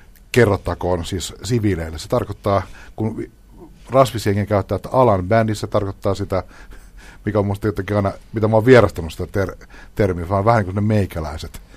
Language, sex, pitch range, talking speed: Finnish, male, 90-105 Hz, 150 wpm